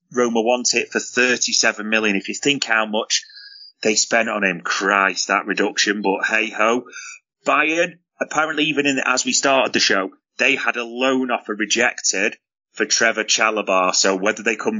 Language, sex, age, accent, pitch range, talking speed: English, male, 30-49, British, 120-150 Hz, 175 wpm